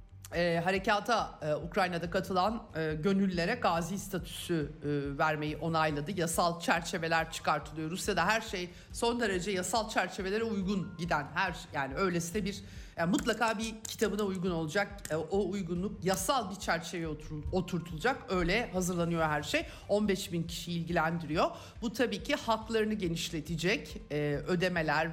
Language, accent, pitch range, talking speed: Turkish, native, 160-210 Hz, 120 wpm